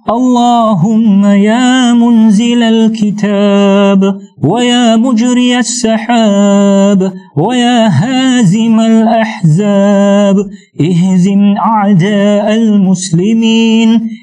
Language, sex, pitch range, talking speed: Malay, male, 200-230 Hz, 55 wpm